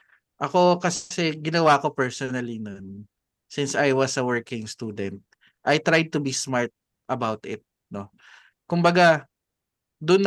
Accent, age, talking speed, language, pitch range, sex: native, 20-39, 135 wpm, Filipino, 120-150 Hz, male